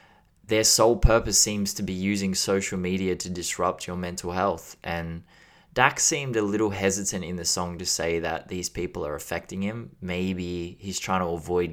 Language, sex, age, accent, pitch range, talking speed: English, male, 20-39, Australian, 85-100 Hz, 185 wpm